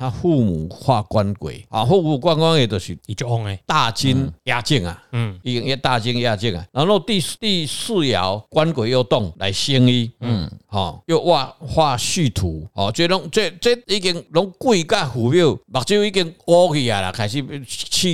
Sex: male